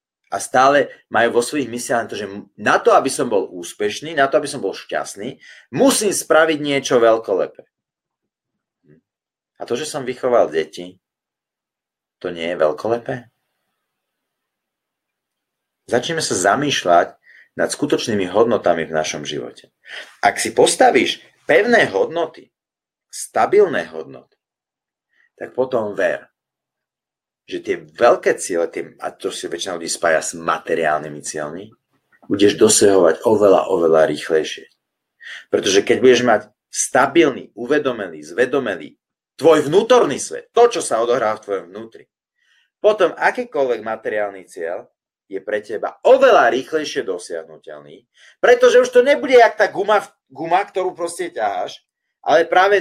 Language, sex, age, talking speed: Slovak, male, 30-49, 125 wpm